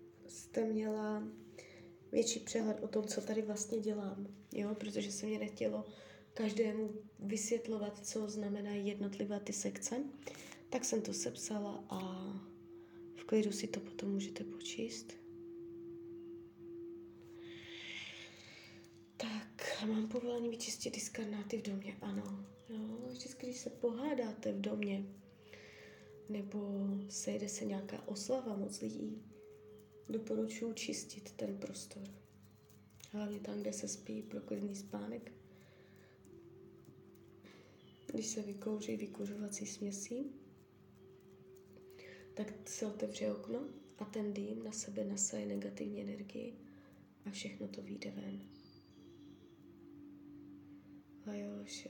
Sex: female